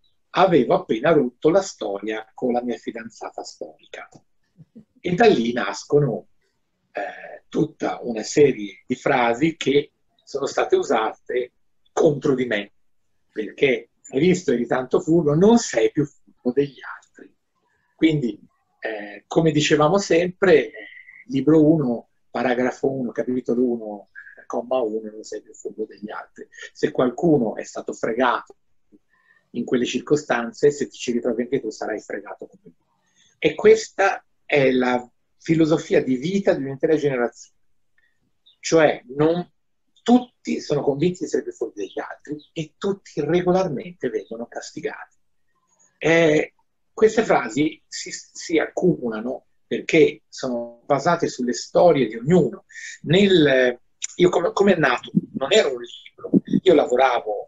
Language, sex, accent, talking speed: Italian, male, native, 135 wpm